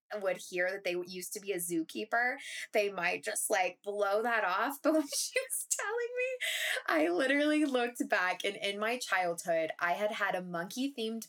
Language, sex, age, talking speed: English, female, 20-39, 190 wpm